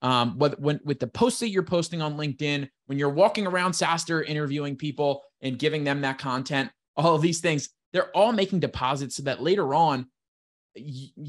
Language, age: English, 20-39